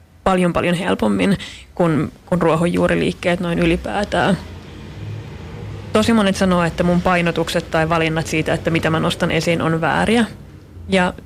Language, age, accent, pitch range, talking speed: Finnish, 30-49, native, 165-185 Hz, 145 wpm